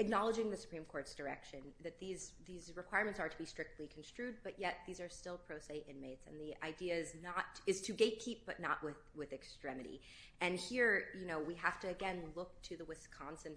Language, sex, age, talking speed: English, female, 30-49, 210 wpm